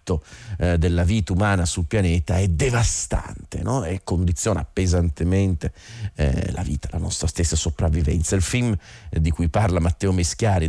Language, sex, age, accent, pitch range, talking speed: Italian, male, 40-59, native, 85-105 Hz, 150 wpm